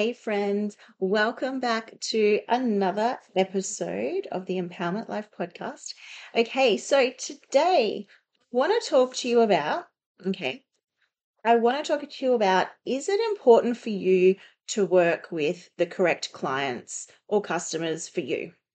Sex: female